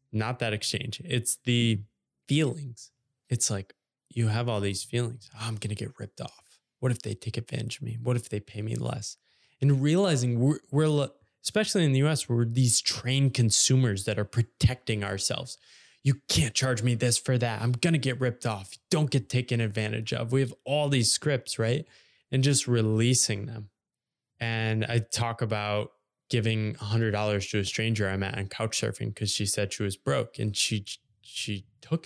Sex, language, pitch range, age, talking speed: male, English, 110-130 Hz, 20-39, 190 wpm